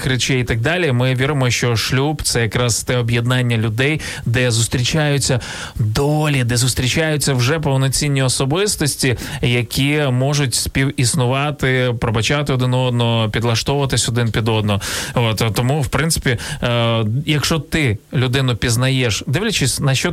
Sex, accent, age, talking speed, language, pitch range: male, native, 20-39, 130 wpm, Ukrainian, 115-135 Hz